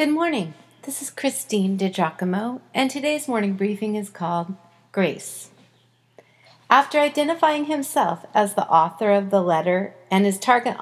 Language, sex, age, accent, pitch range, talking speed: English, female, 40-59, American, 175-255 Hz, 140 wpm